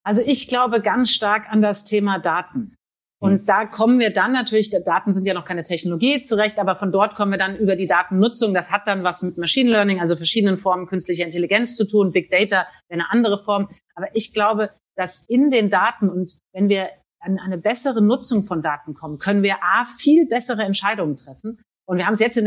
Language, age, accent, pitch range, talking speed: German, 40-59, German, 185-225 Hz, 215 wpm